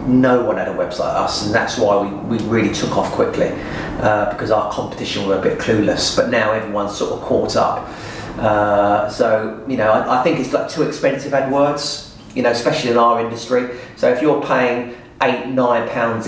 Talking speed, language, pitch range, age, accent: 205 wpm, English, 110-130 Hz, 30-49, British